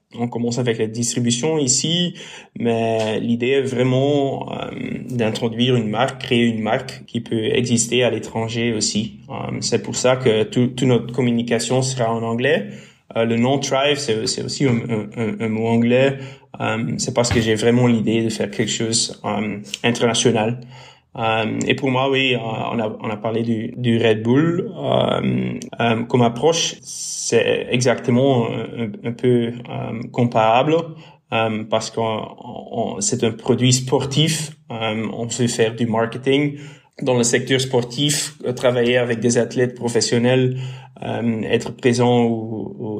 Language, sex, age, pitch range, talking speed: French, male, 20-39, 115-130 Hz, 160 wpm